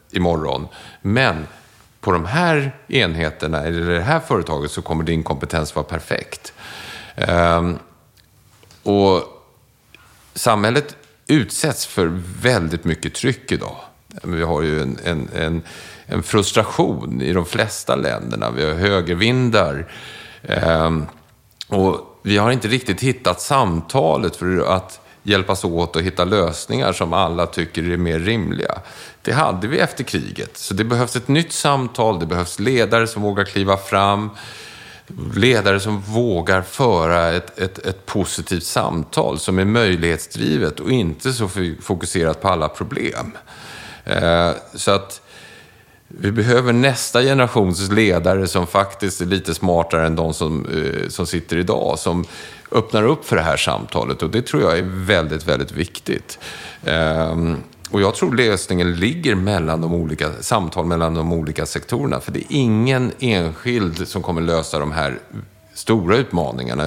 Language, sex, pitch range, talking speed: Swedish, male, 80-105 Hz, 135 wpm